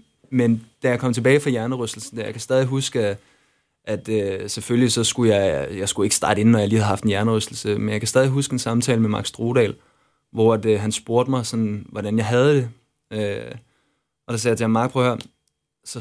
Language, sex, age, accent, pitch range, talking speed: Danish, male, 20-39, native, 115-140 Hz, 220 wpm